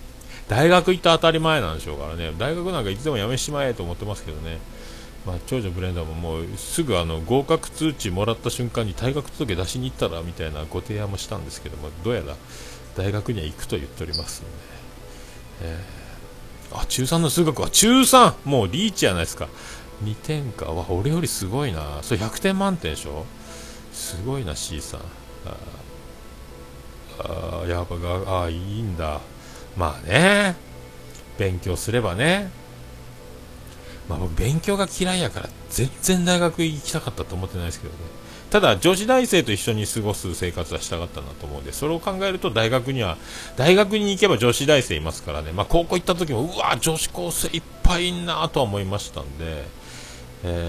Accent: native